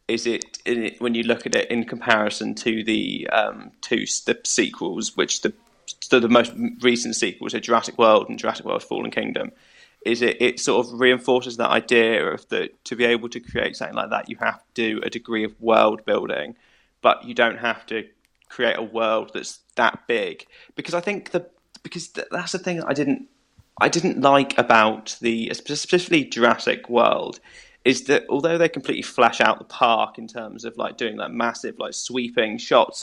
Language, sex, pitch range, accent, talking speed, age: English, male, 120-175 Hz, British, 195 wpm, 20-39